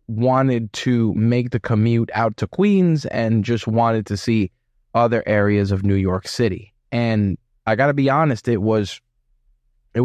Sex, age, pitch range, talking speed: male, 20-39, 105-120 Hz, 165 wpm